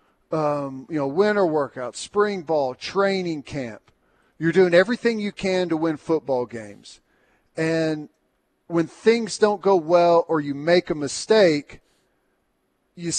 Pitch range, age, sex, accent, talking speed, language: 160-215 Hz, 40-59, male, American, 130 wpm, English